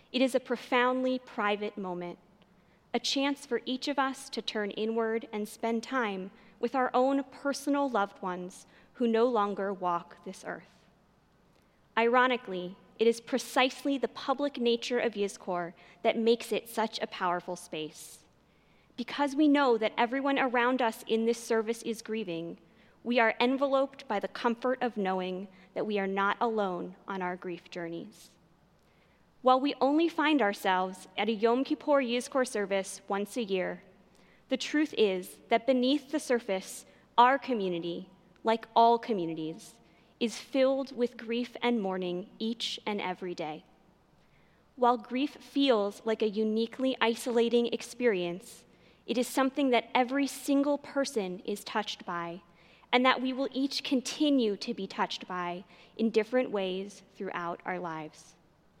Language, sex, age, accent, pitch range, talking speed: English, female, 20-39, American, 195-255 Hz, 150 wpm